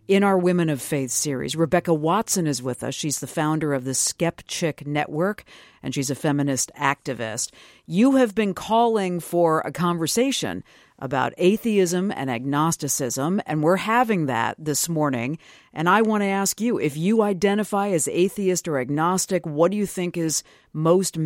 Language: English